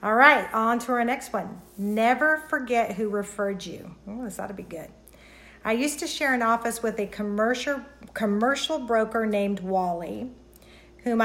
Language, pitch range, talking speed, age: English, 205-240 Hz, 170 wpm, 50-69